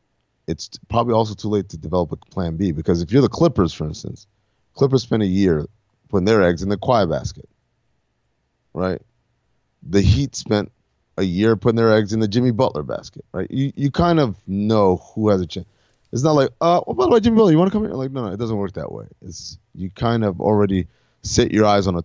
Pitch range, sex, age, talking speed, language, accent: 90-115 Hz, male, 30-49, 230 wpm, English, American